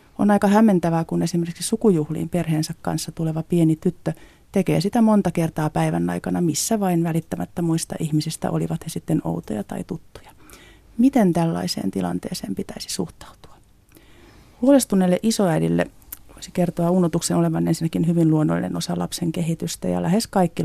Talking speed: 140 wpm